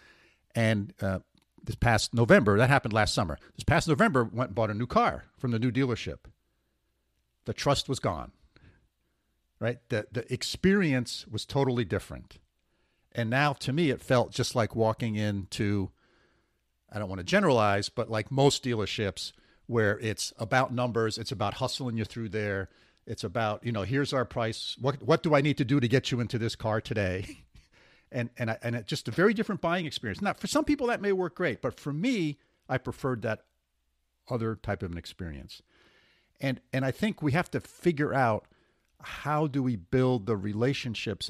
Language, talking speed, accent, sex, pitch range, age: English, 185 wpm, American, male, 105-135 Hz, 50-69